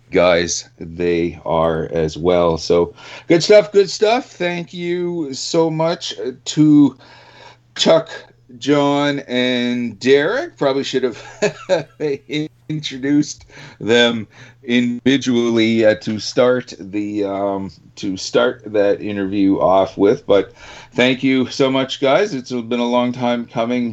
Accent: American